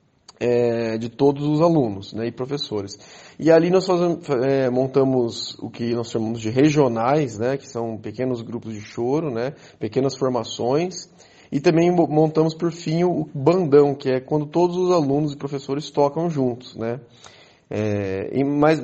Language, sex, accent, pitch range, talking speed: Portuguese, male, Brazilian, 120-165 Hz, 145 wpm